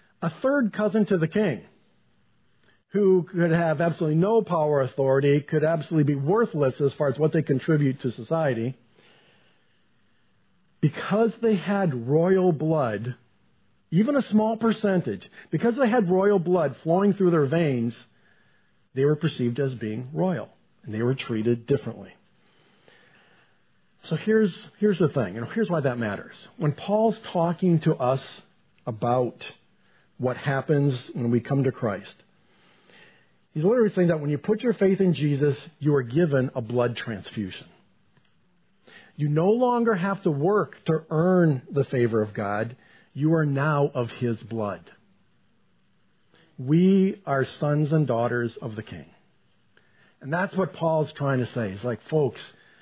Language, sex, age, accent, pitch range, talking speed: English, male, 50-69, American, 125-180 Hz, 150 wpm